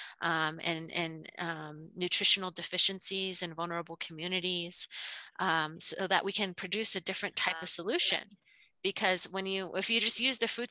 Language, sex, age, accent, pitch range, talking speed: English, female, 20-39, American, 175-210 Hz, 165 wpm